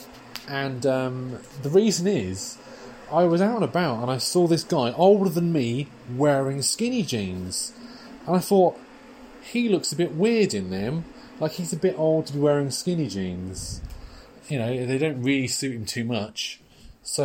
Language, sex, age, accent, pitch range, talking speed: English, male, 30-49, British, 130-185 Hz, 175 wpm